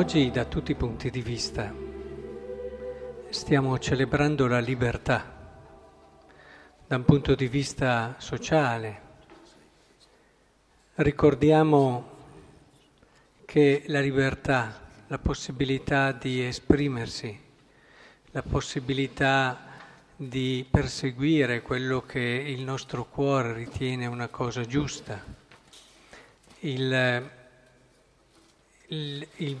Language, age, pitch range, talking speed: Italian, 50-69, 125-145 Hz, 80 wpm